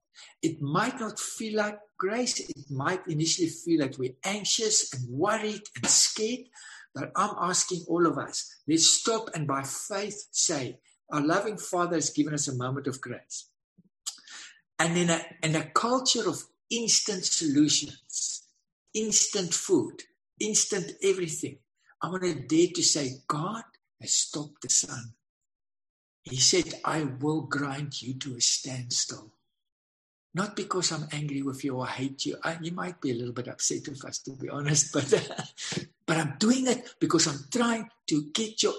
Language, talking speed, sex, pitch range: English, 160 wpm, male, 135-210 Hz